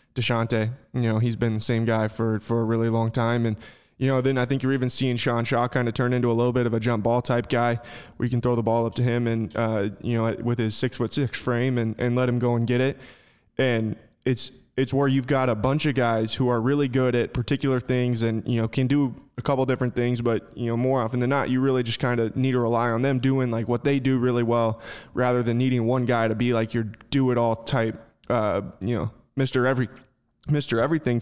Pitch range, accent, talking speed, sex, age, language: 115-130 Hz, American, 260 wpm, male, 20-39, English